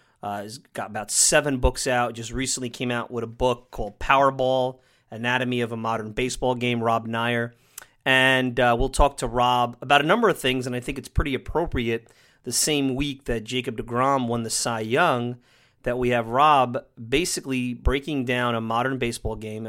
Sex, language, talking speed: male, English, 190 wpm